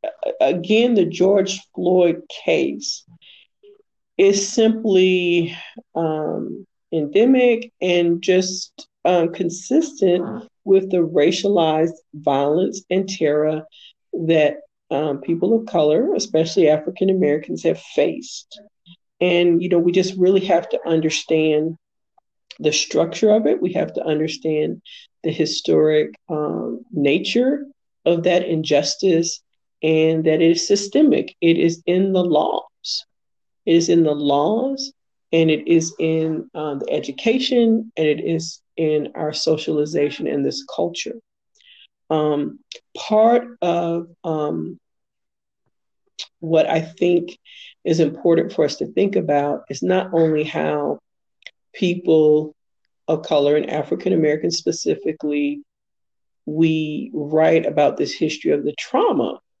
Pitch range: 155-195 Hz